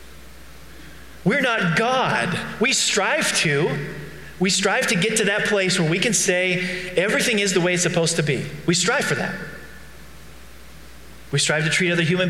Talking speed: 170 wpm